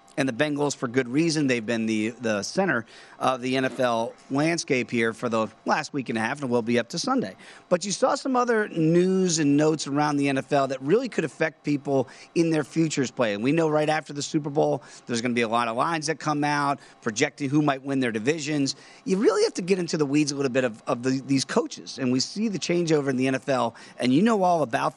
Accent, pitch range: American, 125-160 Hz